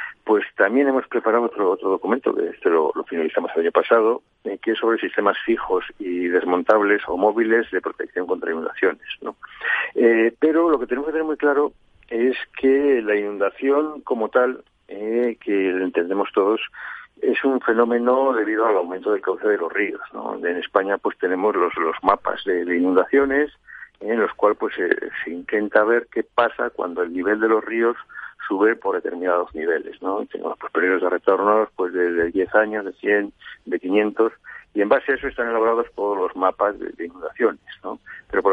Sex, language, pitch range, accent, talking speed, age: male, Spanish, 105-140 Hz, Spanish, 190 wpm, 50-69